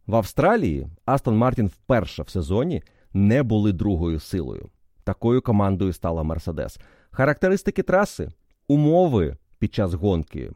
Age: 30-49